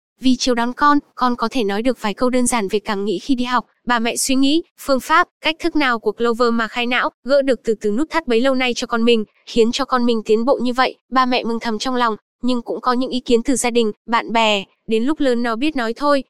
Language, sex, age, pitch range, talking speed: Vietnamese, female, 10-29, 230-265 Hz, 285 wpm